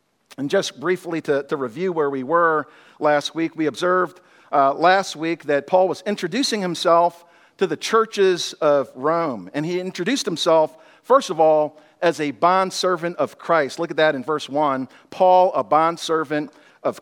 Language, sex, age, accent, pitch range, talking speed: English, male, 50-69, American, 155-195 Hz, 170 wpm